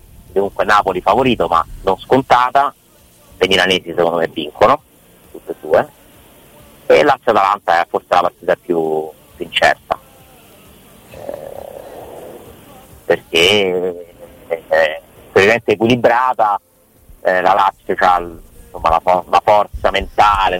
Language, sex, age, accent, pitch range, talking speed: Italian, male, 30-49, native, 90-115 Hz, 125 wpm